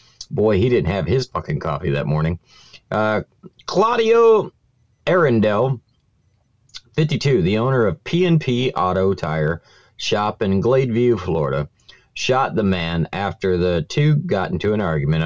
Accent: American